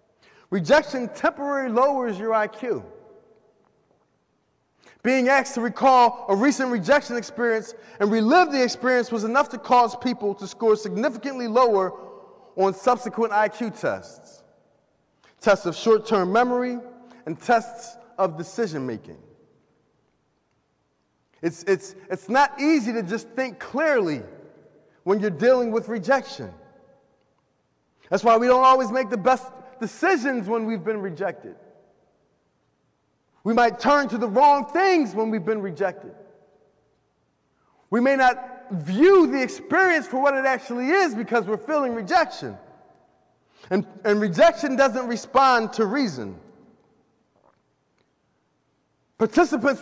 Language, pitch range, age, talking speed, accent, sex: English, 215-265 Hz, 30-49, 120 wpm, American, male